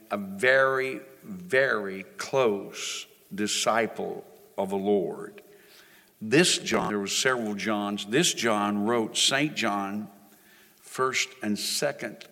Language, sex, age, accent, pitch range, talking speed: English, male, 60-79, American, 105-125 Hz, 105 wpm